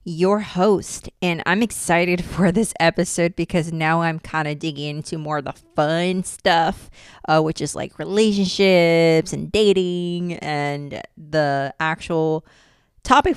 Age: 30-49